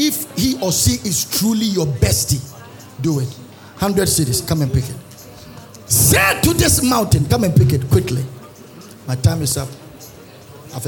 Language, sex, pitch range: English, male, 100-150 Hz